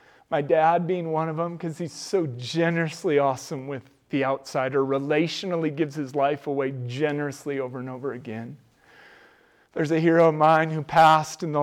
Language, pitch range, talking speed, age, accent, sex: English, 150-220 Hz, 170 wpm, 40-59, American, male